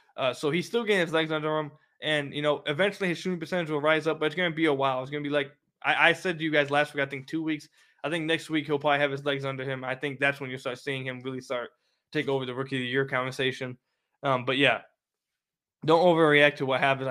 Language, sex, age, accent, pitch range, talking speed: English, male, 20-39, American, 130-150 Hz, 280 wpm